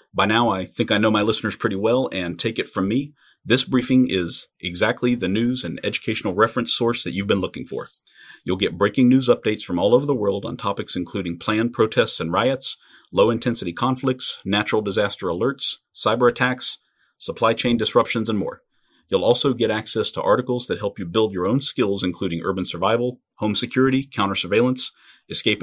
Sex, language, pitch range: male, English, 100-125 Hz